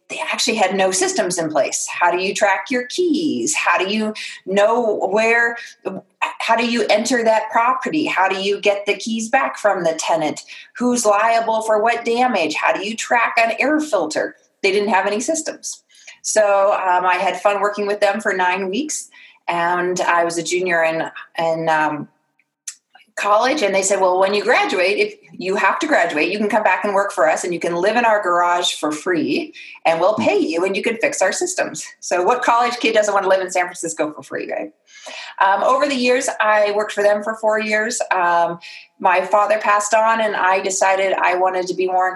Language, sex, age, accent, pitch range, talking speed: English, female, 30-49, American, 185-230 Hz, 210 wpm